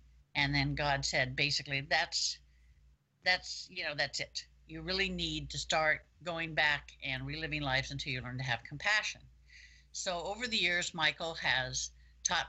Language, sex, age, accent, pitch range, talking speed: English, female, 50-69, American, 130-165 Hz, 165 wpm